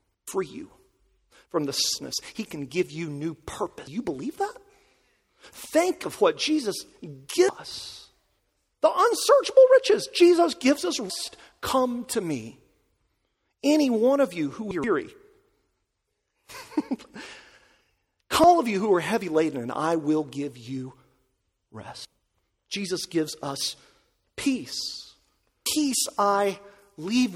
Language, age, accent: English, 40-59, American